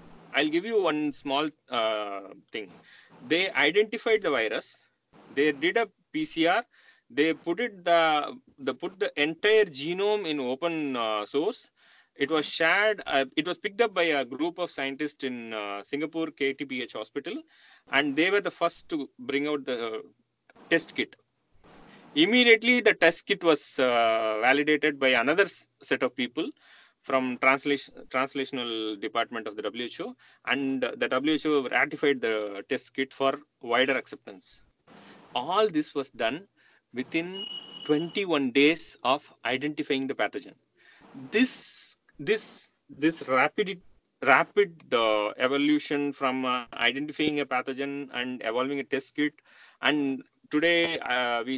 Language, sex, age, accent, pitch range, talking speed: English, male, 30-49, Indian, 130-170 Hz, 140 wpm